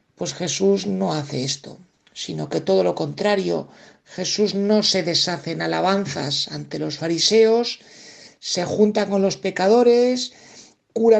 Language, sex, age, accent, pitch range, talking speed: Spanish, male, 60-79, Spanish, 165-215 Hz, 135 wpm